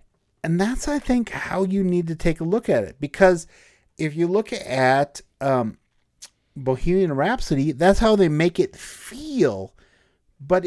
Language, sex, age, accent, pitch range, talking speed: English, male, 50-69, American, 130-175 Hz, 155 wpm